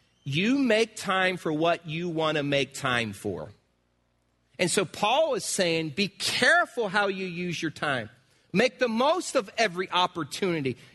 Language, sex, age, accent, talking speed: English, male, 40-59, American, 160 wpm